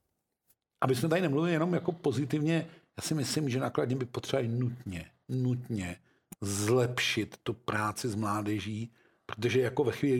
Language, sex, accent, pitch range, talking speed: Czech, male, native, 115-135 Hz, 145 wpm